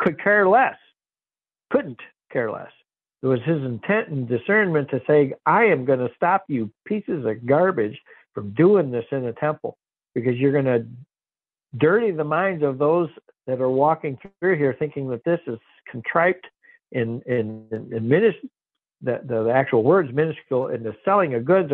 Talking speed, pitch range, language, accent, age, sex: 170 wpm, 120-175 Hz, English, American, 60-79, male